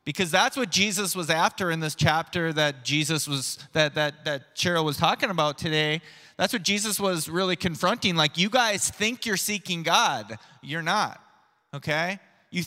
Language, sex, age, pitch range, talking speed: English, male, 20-39, 155-190 Hz, 155 wpm